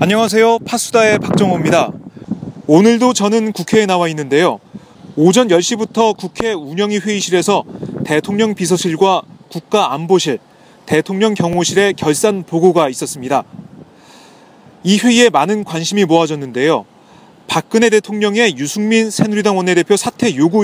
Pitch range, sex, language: 165-210 Hz, male, Korean